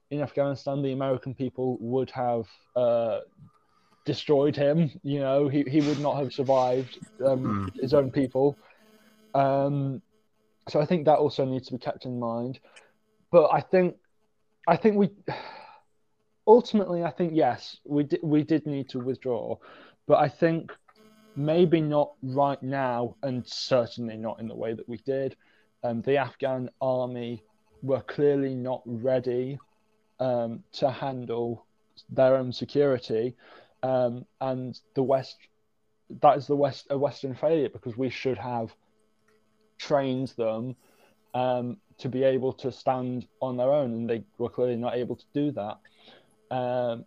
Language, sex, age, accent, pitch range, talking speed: English, male, 20-39, British, 120-145 Hz, 145 wpm